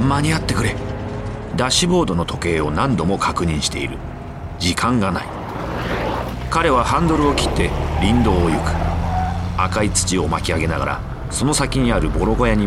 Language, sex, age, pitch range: Japanese, male, 40-59, 80-115 Hz